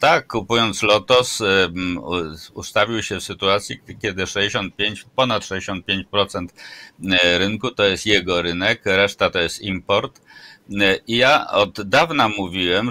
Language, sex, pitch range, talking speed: Polish, male, 90-110 Hz, 120 wpm